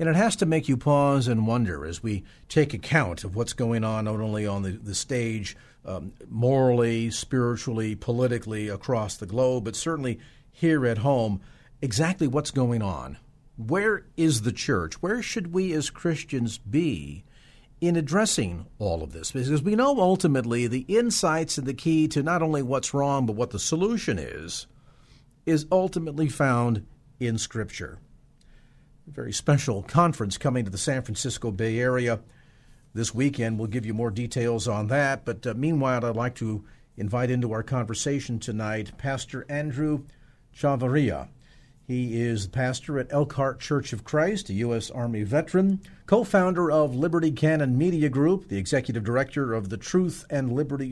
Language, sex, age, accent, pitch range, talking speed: English, male, 50-69, American, 115-150 Hz, 165 wpm